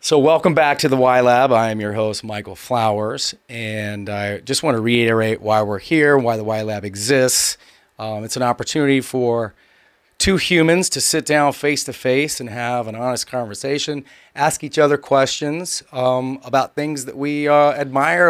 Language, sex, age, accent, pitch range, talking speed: English, male, 30-49, American, 120-150 Hz, 175 wpm